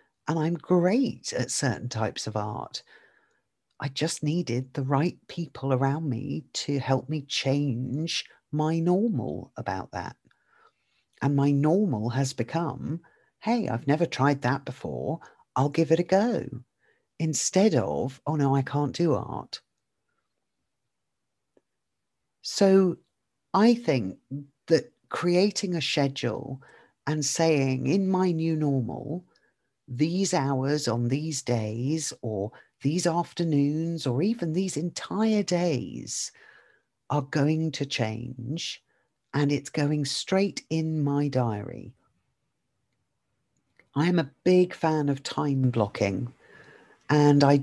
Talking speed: 120 wpm